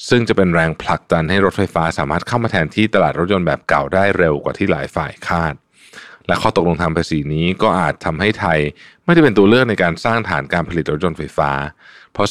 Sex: male